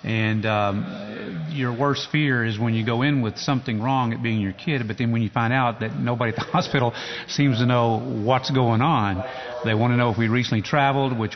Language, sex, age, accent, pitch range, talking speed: English, male, 40-59, American, 110-130 Hz, 225 wpm